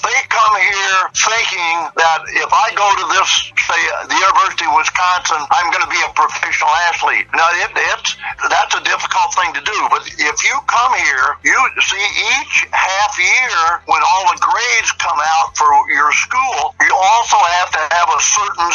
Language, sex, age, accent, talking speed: Portuguese, male, 60-79, American, 175 wpm